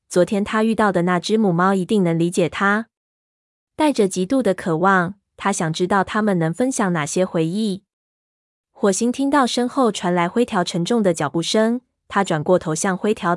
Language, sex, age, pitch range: Chinese, female, 20-39, 175-220 Hz